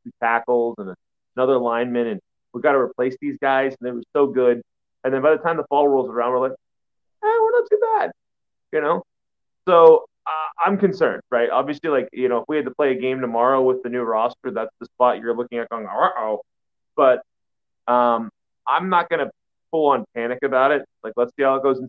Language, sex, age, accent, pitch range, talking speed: English, male, 30-49, American, 115-155 Hz, 230 wpm